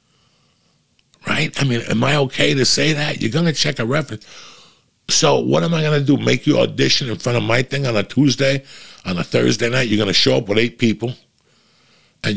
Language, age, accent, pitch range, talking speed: English, 60-79, American, 105-140 Hz, 225 wpm